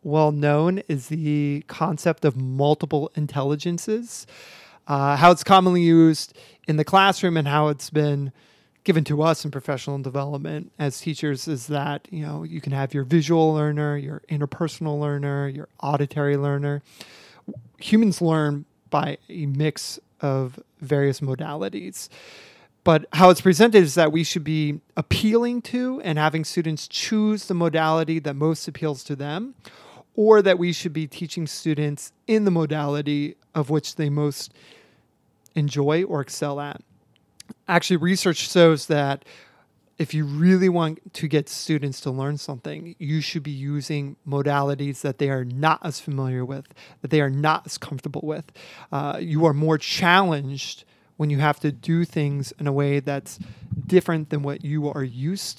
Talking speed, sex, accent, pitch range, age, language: 155 wpm, male, American, 145-165 Hz, 30-49, English